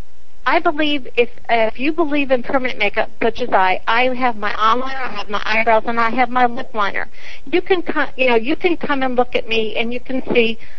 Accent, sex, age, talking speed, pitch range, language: American, female, 60-79, 230 wpm, 210-265 Hz, English